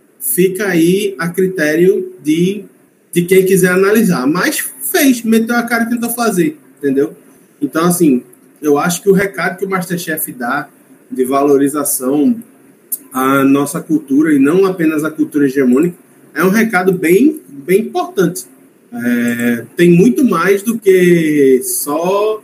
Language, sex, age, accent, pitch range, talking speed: Portuguese, male, 20-39, Brazilian, 145-195 Hz, 140 wpm